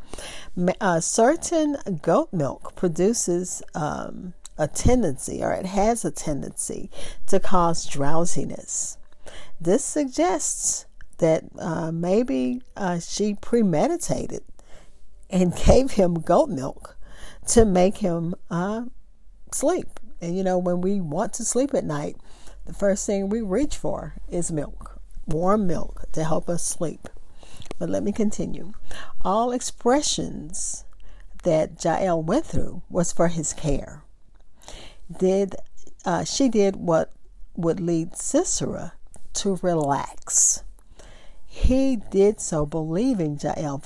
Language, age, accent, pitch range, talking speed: English, 50-69, American, 165-230 Hz, 120 wpm